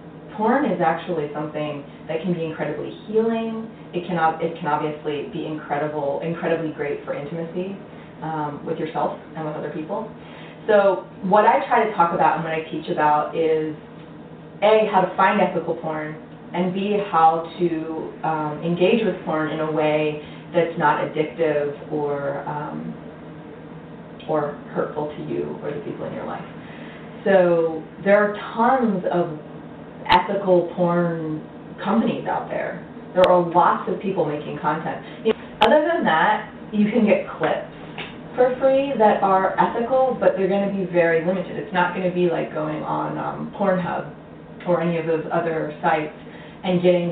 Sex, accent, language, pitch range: female, American, English, 155-190 Hz